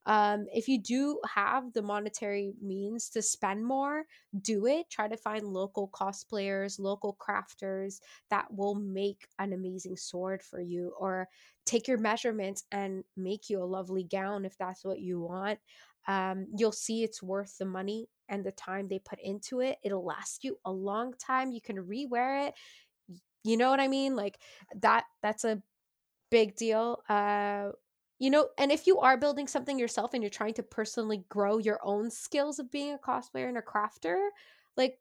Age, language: 10-29, English